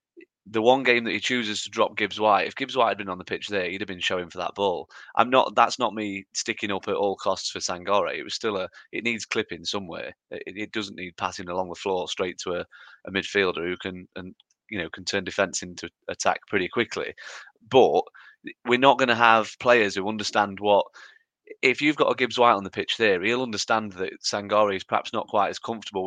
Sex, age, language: male, 30-49, English